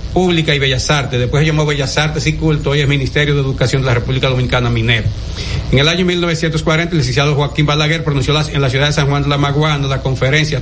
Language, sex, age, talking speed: Spanish, male, 60-79, 230 wpm